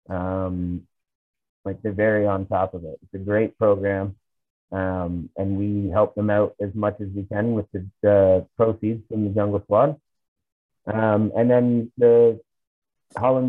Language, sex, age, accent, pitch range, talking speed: English, male, 30-49, American, 100-120 Hz, 160 wpm